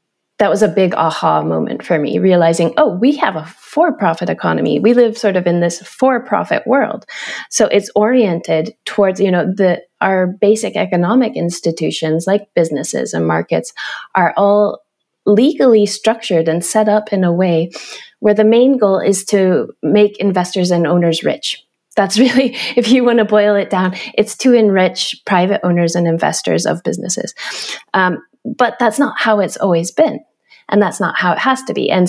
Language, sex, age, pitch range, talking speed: English, female, 30-49, 170-215 Hz, 175 wpm